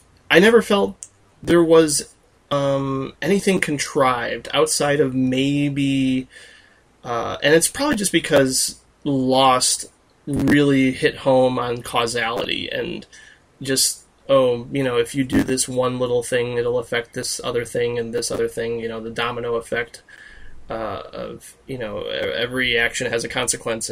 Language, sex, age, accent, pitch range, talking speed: English, male, 20-39, American, 120-145 Hz, 145 wpm